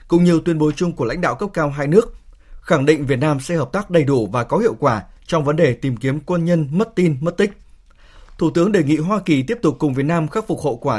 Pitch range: 140-170 Hz